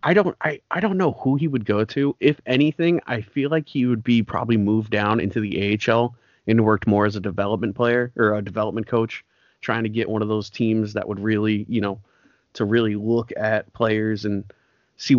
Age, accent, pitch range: 30-49, American, 100-115 Hz